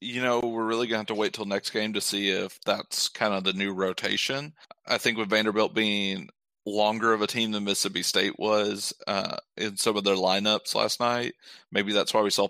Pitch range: 100-120 Hz